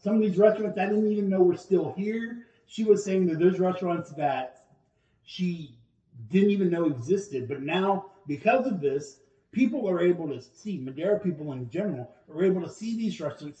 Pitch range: 135-185 Hz